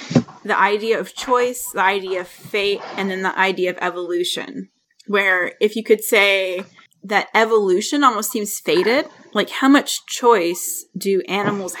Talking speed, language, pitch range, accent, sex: 155 wpm, English, 180-230 Hz, American, female